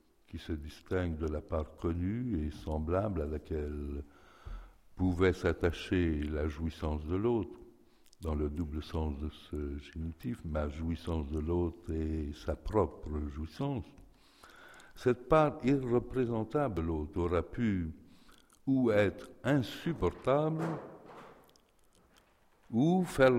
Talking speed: 115 wpm